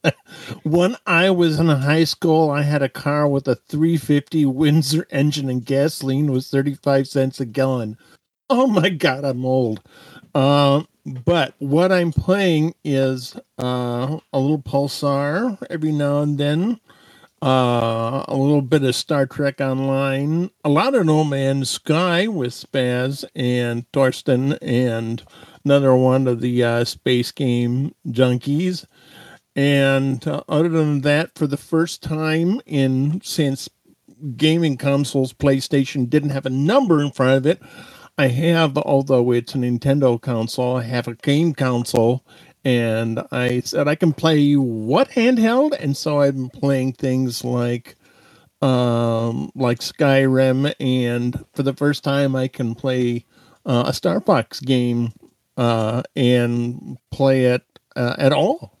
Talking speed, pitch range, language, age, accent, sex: 145 wpm, 125-155 Hz, English, 50-69, American, male